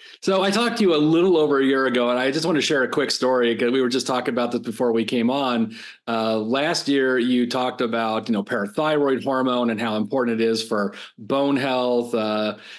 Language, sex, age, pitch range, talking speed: English, male, 40-59, 115-135 Hz, 235 wpm